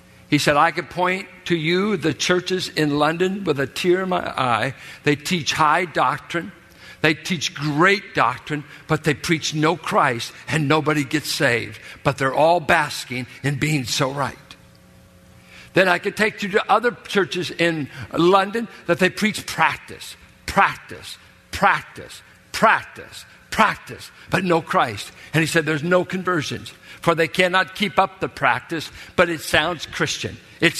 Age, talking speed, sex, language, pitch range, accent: 60-79, 160 wpm, male, English, 145-185 Hz, American